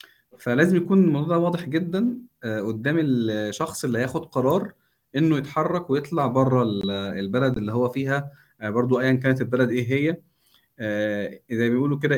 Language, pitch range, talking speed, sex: Arabic, 115-140 Hz, 135 wpm, male